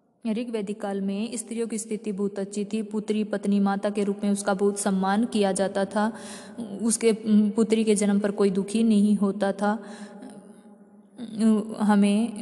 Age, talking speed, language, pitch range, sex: 20-39, 155 wpm, Hindi, 195-210 Hz, female